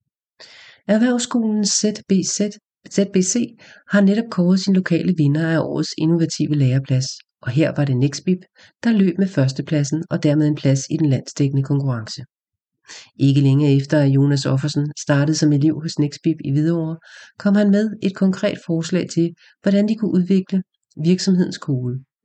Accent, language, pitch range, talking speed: Danish, English, 145-180 Hz, 150 wpm